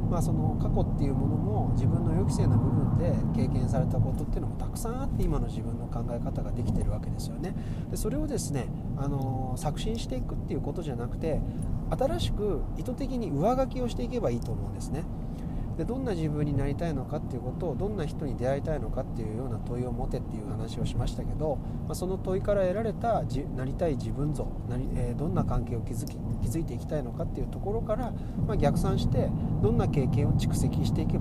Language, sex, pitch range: Japanese, male, 115-140 Hz